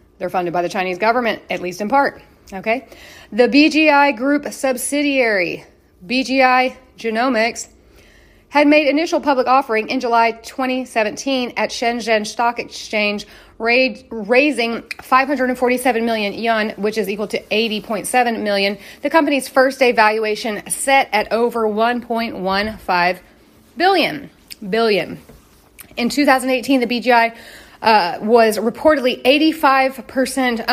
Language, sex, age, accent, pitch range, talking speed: English, female, 30-49, American, 205-255 Hz, 115 wpm